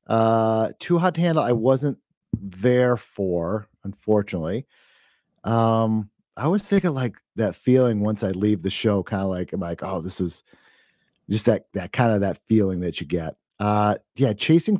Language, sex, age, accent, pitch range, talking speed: English, male, 30-49, American, 100-135 Hz, 175 wpm